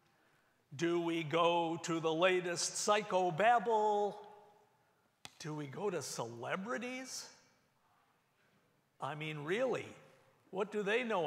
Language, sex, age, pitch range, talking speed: English, male, 50-69, 165-220 Hz, 100 wpm